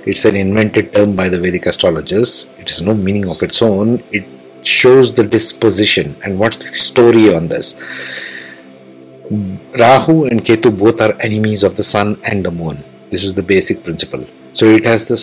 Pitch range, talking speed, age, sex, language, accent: 95-120 Hz, 180 wpm, 60-79, male, English, Indian